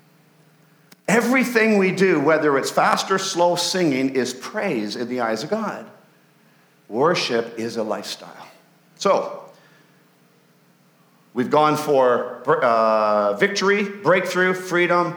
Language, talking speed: English, 110 wpm